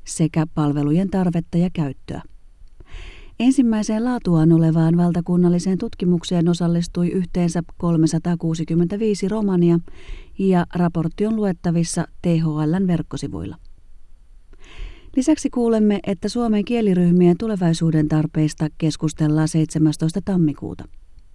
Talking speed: 85 wpm